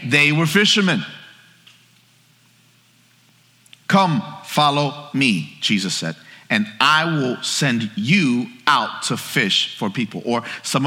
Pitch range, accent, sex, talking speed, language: 140-195 Hz, American, male, 110 wpm, English